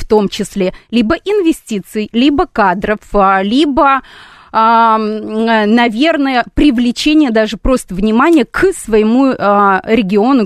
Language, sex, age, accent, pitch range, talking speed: Russian, female, 30-49, native, 205-250 Hz, 90 wpm